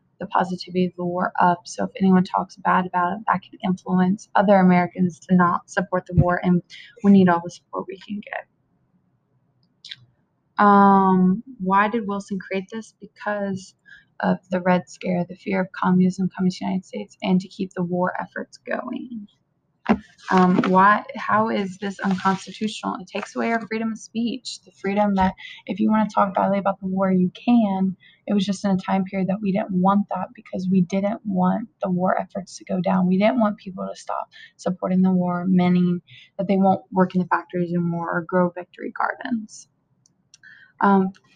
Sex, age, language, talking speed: female, 20-39, English, 190 wpm